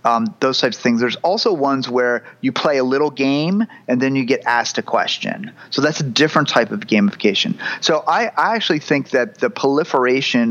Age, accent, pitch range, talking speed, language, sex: 30-49, American, 120-150 Hz, 205 wpm, English, male